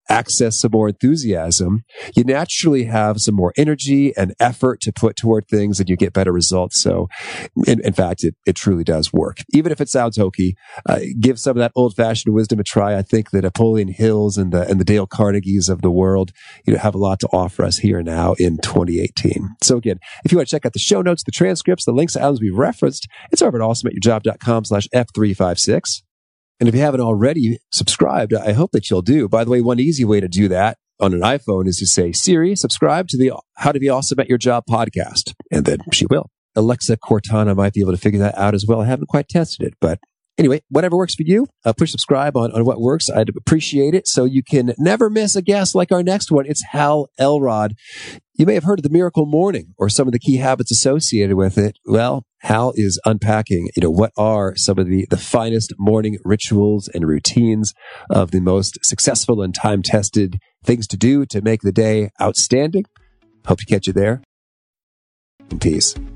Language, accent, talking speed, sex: English, American, 215 wpm, male